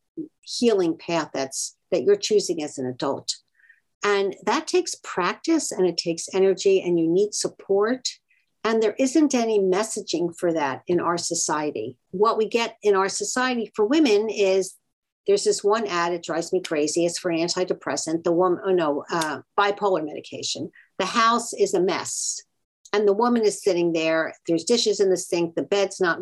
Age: 50-69